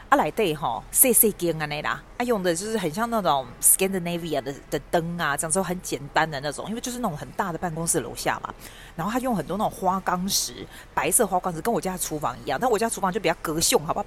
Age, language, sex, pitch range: 30-49, Chinese, female, 155-220 Hz